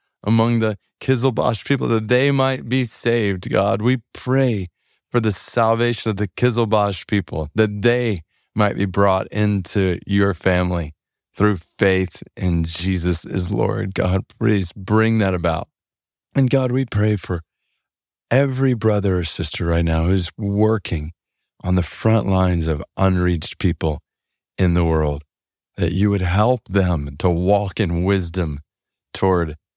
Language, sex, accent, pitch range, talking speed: English, male, American, 85-105 Hz, 145 wpm